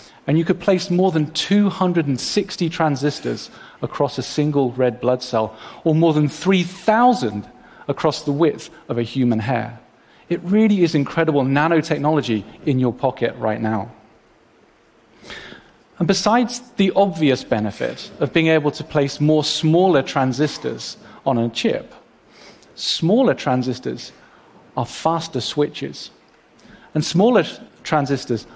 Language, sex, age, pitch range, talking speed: Arabic, male, 40-59, 125-175 Hz, 125 wpm